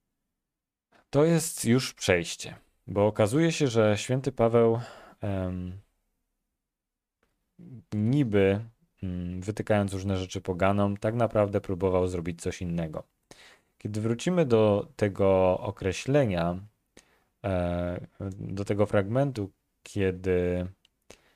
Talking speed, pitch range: 85 wpm, 90-110 Hz